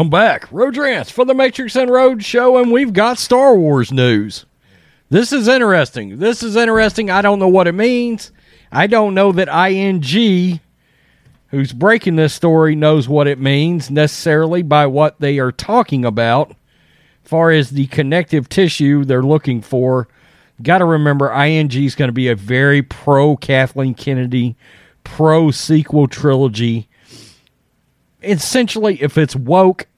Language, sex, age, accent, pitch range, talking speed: English, male, 40-59, American, 130-185 Hz, 150 wpm